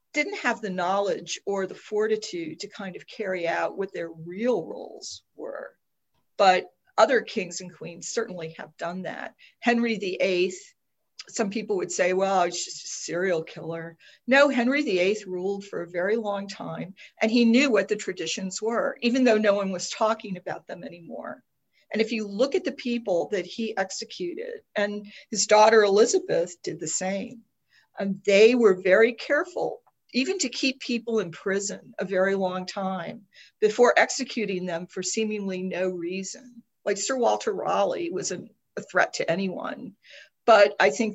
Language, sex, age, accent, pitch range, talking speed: English, female, 50-69, American, 185-235 Hz, 165 wpm